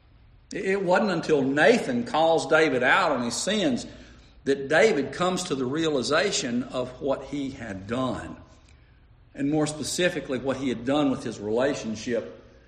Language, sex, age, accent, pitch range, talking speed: English, male, 60-79, American, 110-165 Hz, 145 wpm